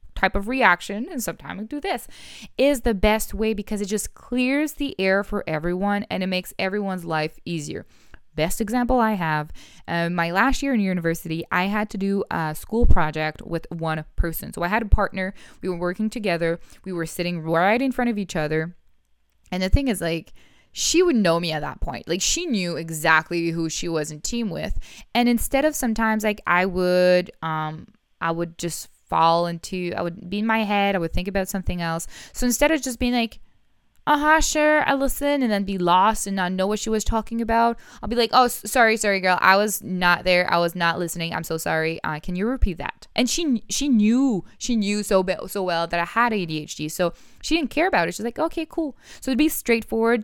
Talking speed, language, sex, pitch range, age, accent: 220 wpm, English, female, 170-235 Hz, 20-39, American